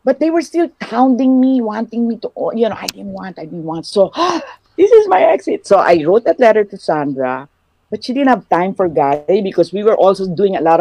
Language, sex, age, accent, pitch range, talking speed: English, female, 50-69, Filipino, 150-230 Hz, 245 wpm